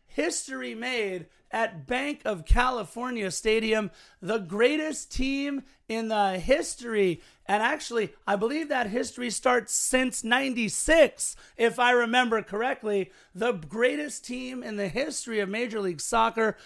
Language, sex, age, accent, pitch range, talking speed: English, male, 40-59, American, 195-245 Hz, 130 wpm